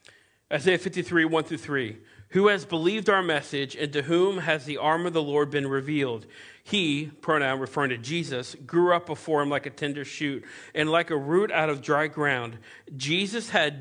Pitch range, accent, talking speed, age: 130-165 Hz, American, 190 wpm, 40-59